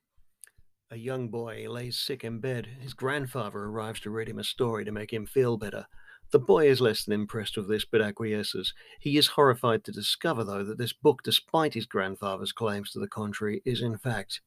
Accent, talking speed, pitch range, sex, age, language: British, 205 wpm, 105-125 Hz, male, 50-69, English